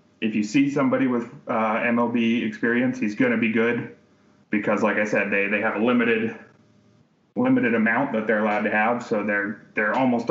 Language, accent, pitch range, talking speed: English, American, 110-130 Hz, 190 wpm